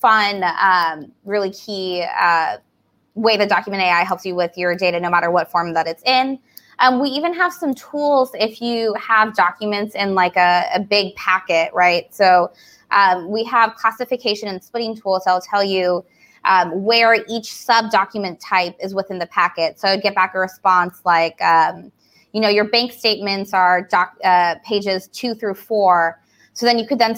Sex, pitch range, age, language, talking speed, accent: female, 180-225 Hz, 20-39, English, 190 wpm, American